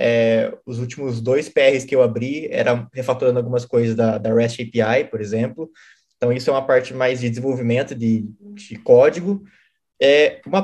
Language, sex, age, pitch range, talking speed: Portuguese, male, 20-39, 115-160 Hz, 175 wpm